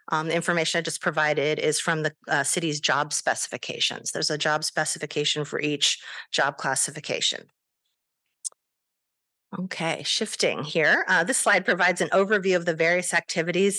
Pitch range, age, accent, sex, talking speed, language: 160-185 Hz, 30-49, American, female, 150 wpm, English